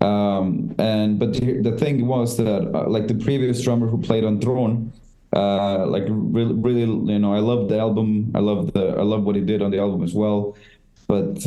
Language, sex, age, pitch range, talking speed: English, male, 30-49, 105-120 Hz, 210 wpm